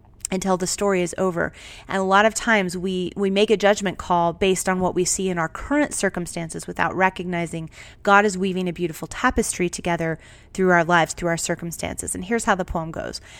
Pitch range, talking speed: 170-200 Hz, 205 wpm